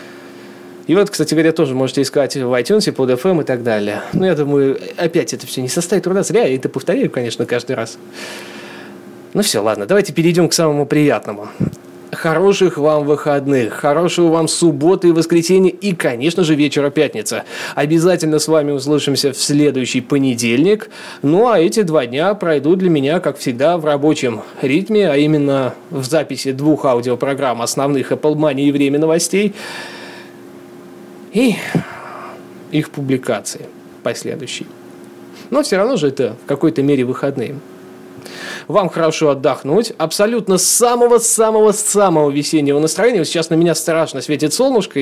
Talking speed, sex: 145 wpm, male